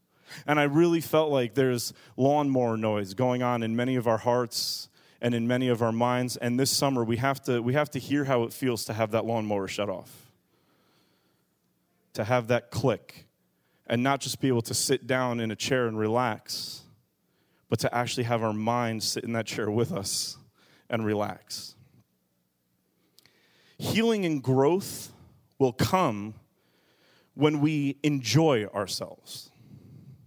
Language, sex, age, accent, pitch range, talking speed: English, male, 30-49, American, 115-145 Hz, 160 wpm